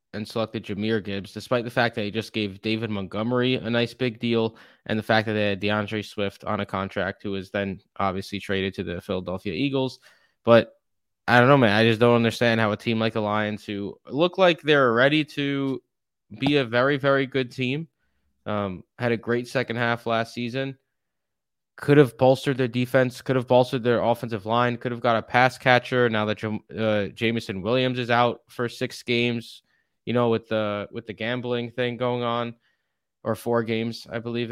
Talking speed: 200 wpm